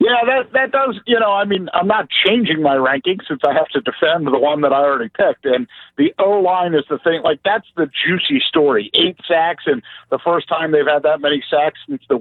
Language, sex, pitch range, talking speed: English, male, 150-205 Hz, 240 wpm